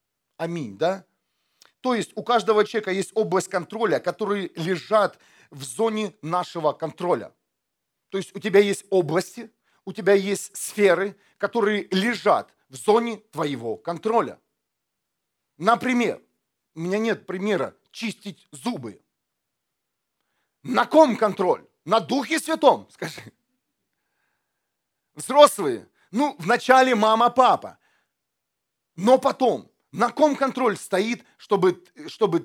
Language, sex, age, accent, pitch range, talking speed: Russian, male, 40-59, native, 180-230 Hz, 110 wpm